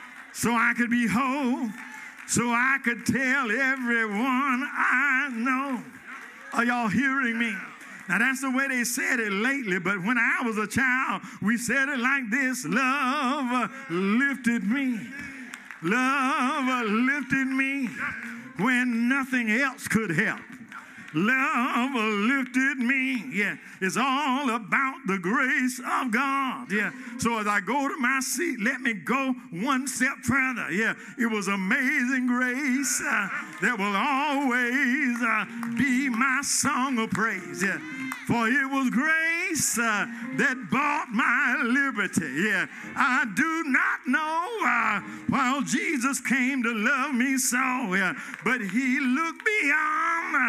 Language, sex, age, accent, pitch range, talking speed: English, male, 50-69, American, 230-270 Hz, 135 wpm